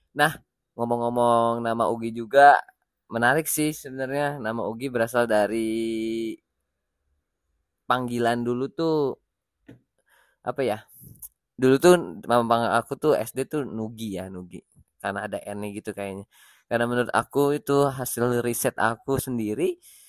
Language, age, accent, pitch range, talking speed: Indonesian, 20-39, native, 110-135 Hz, 120 wpm